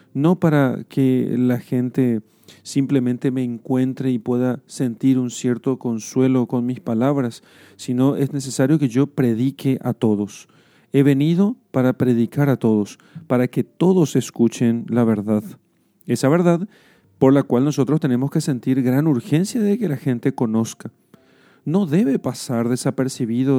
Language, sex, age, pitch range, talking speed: Spanish, male, 40-59, 120-145 Hz, 145 wpm